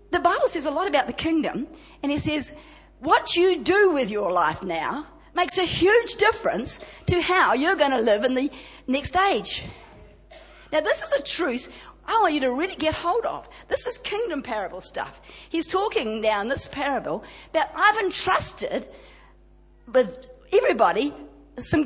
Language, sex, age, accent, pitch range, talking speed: English, female, 50-69, Australian, 220-345 Hz, 170 wpm